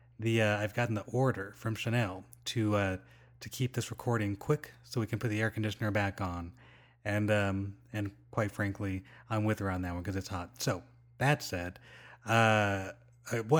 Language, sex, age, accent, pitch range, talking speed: English, male, 30-49, American, 105-125 Hz, 185 wpm